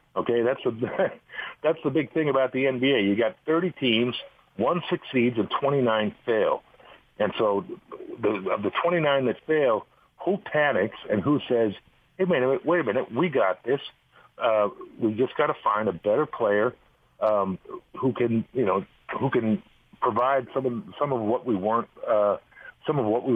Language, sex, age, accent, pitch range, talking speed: English, male, 50-69, American, 105-155 Hz, 180 wpm